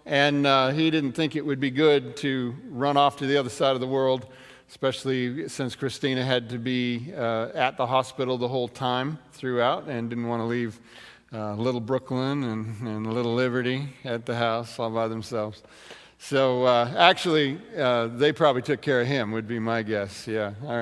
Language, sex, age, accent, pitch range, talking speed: English, male, 50-69, American, 120-150 Hz, 195 wpm